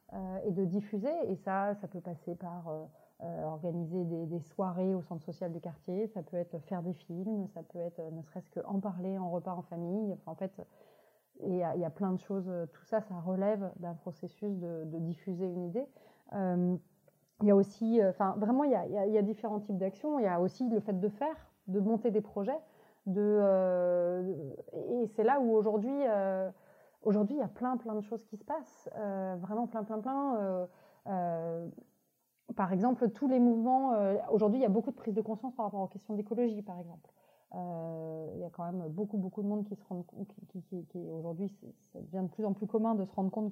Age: 30-49